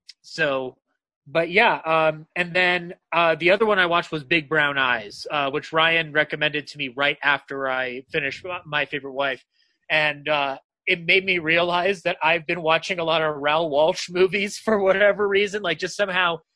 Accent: American